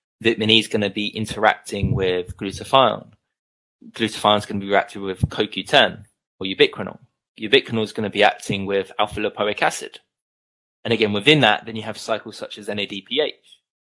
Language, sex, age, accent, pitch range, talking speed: English, male, 20-39, British, 100-120 Hz, 170 wpm